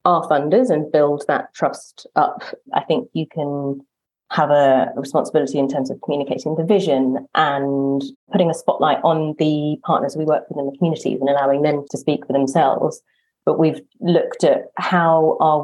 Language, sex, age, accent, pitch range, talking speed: English, female, 30-49, British, 140-165 Hz, 175 wpm